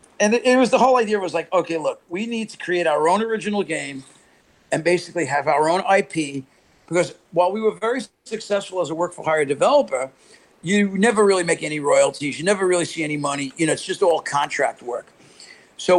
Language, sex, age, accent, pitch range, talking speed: English, male, 50-69, American, 155-195 Hz, 205 wpm